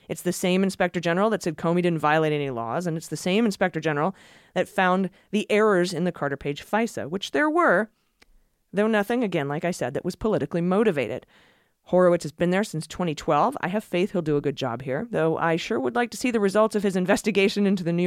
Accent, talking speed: American, 230 wpm